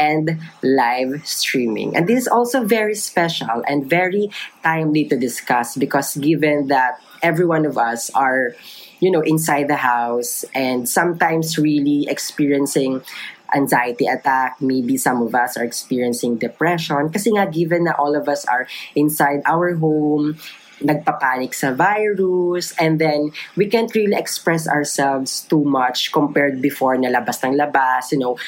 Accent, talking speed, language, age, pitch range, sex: native, 150 wpm, Filipino, 20-39, 135-170 Hz, female